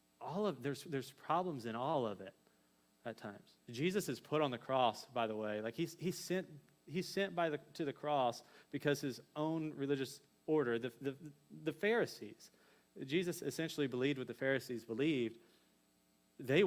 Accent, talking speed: American, 175 wpm